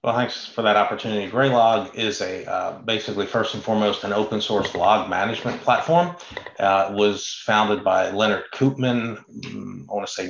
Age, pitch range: 40-59, 100-110 Hz